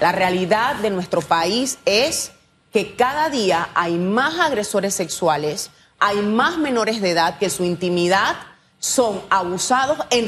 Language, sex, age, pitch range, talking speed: Spanish, female, 30-49, 195-280 Hz, 140 wpm